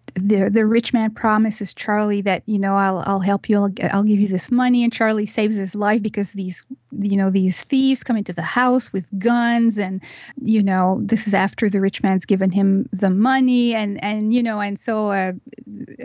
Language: English